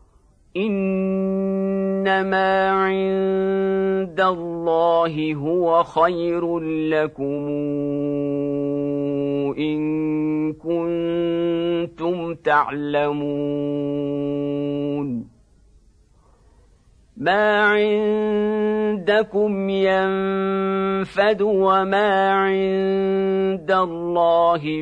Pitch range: 155-195 Hz